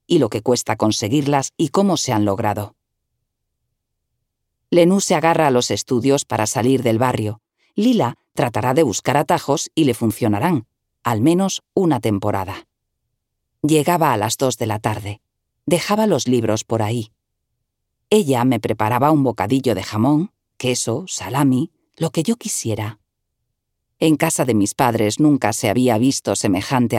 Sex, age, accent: female, 40-59, Spanish